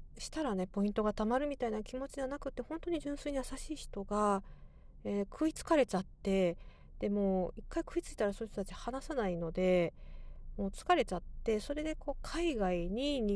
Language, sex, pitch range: Japanese, female, 185-250 Hz